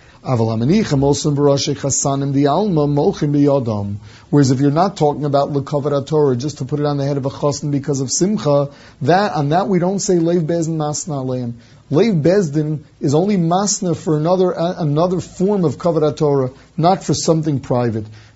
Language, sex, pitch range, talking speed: English, male, 135-170 Hz, 150 wpm